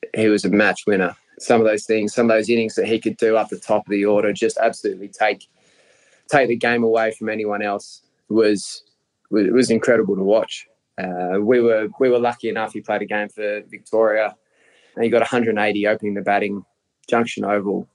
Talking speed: 205 wpm